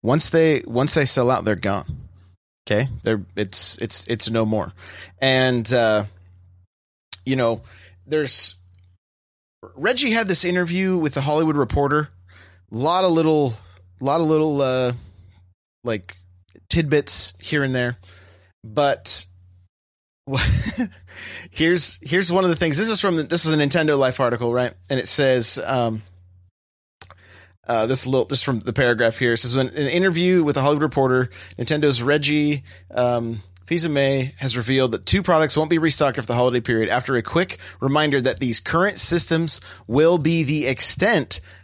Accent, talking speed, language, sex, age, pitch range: American, 160 wpm, English, male, 30-49, 95-145 Hz